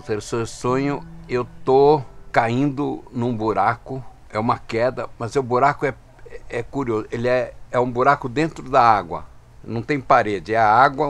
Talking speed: 160 wpm